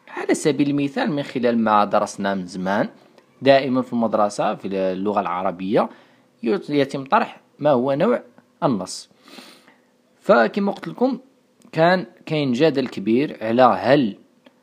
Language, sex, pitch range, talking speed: Arabic, male, 105-155 Hz, 125 wpm